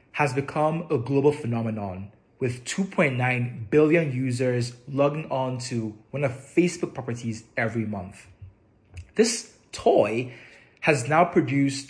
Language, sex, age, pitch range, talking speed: English, male, 20-39, 115-155 Hz, 115 wpm